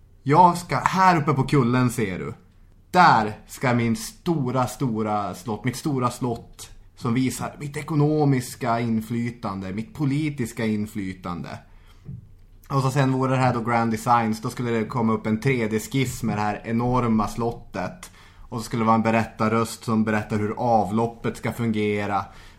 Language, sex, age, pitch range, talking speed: English, male, 20-39, 110-130 Hz, 155 wpm